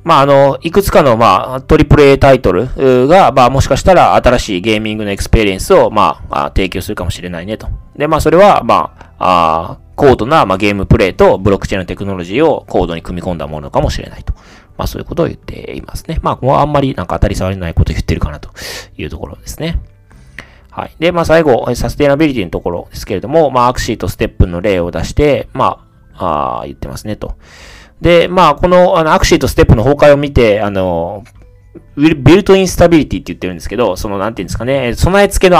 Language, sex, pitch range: Japanese, male, 95-145 Hz